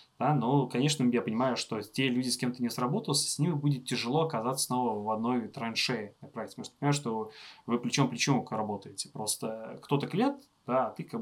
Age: 20-39